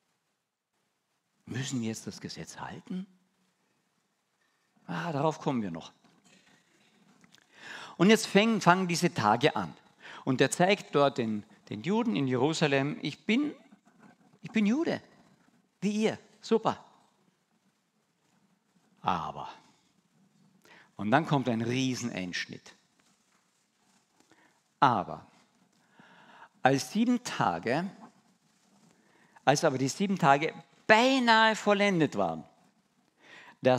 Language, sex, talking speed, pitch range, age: German, male, 95 wpm, 140-215 Hz, 50-69